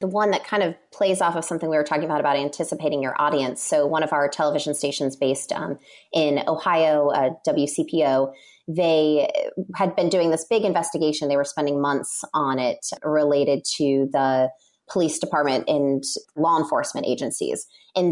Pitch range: 140-160 Hz